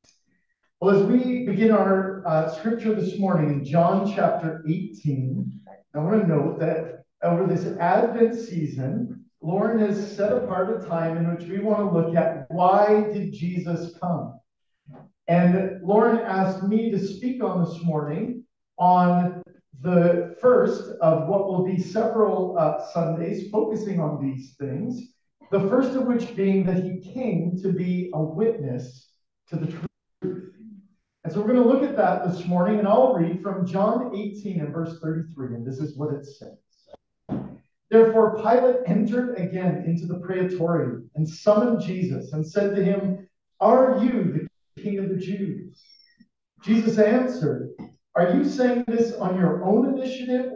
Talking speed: 160 wpm